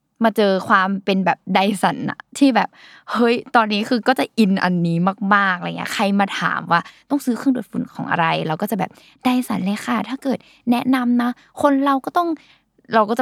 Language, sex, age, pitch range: Thai, female, 10-29, 185-240 Hz